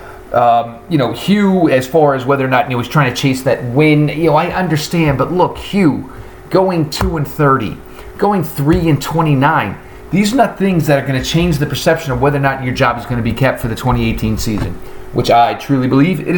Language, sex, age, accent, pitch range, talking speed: English, male, 30-49, American, 120-140 Hz, 225 wpm